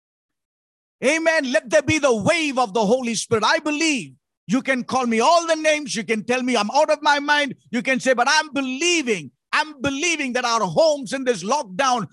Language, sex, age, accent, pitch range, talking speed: English, male, 50-69, Indian, 210-285 Hz, 210 wpm